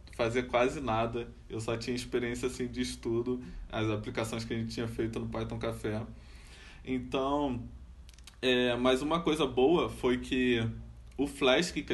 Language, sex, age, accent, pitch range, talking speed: Portuguese, male, 20-39, Brazilian, 115-130 Hz, 155 wpm